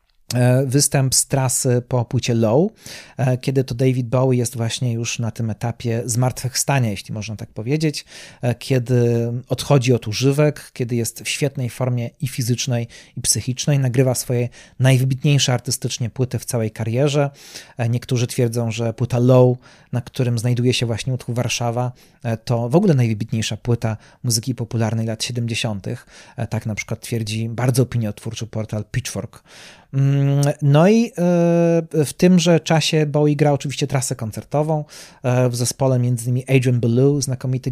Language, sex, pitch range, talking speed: Polish, male, 120-140 Hz, 140 wpm